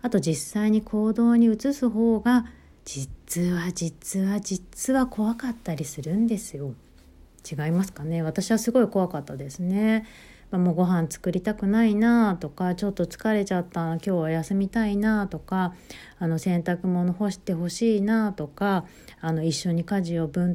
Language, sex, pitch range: Japanese, female, 160-215 Hz